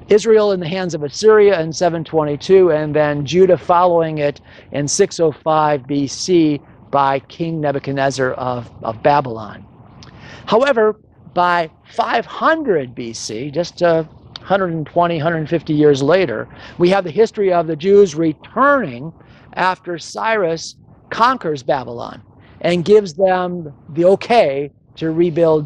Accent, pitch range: American, 145-195 Hz